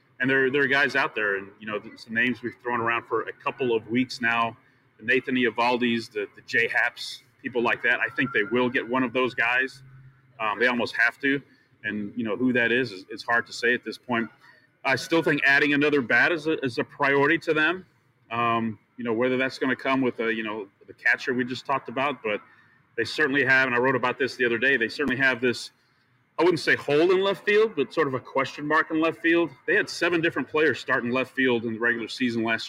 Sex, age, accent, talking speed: male, 30-49, American, 245 wpm